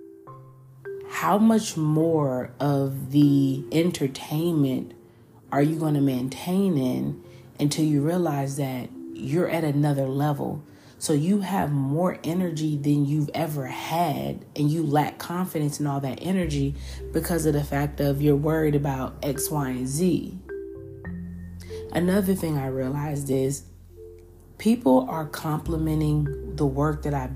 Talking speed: 135 wpm